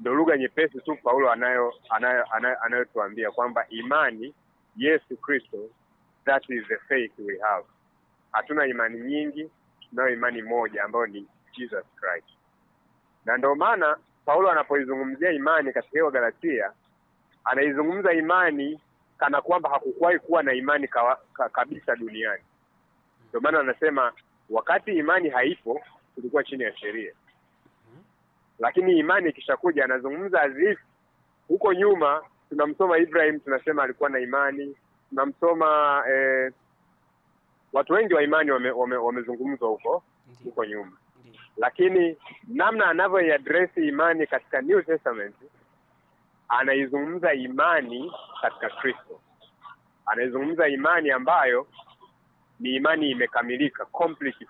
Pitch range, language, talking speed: 130-180 Hz, Swahili, 110 wpm